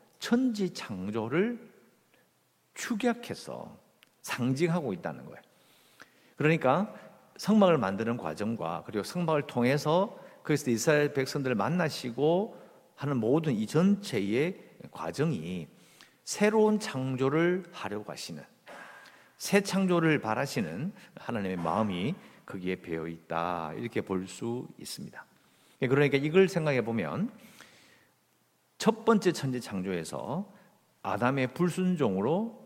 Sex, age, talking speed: male, 50-69, 85 wpm